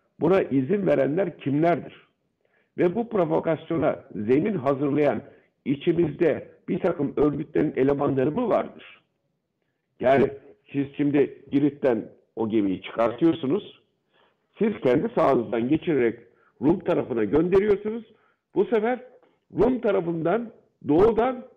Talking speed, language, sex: 95 wpm, Turkish, male